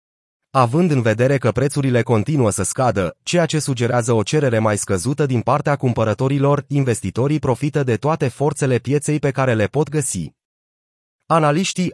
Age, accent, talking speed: 30-49, native, 150 wpm